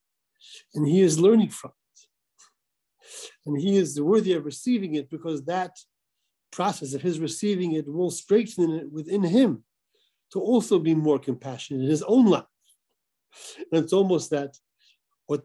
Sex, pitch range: male, 140-180 Hz